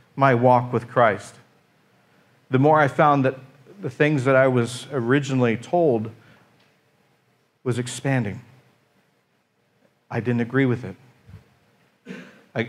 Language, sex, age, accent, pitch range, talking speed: English, male, 40-59, American, 120-160 Hz, 115 wpm